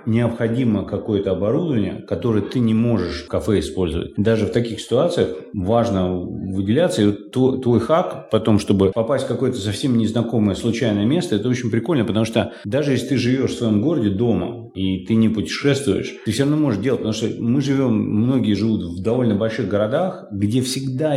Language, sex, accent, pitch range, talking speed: Russian, male, native, 105-125 Hz, 180 wpm